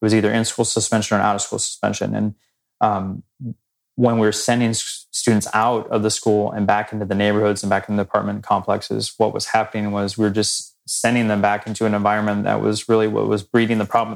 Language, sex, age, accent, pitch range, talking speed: English, male, 20-39, American, 105-115 Hz, 210 wpm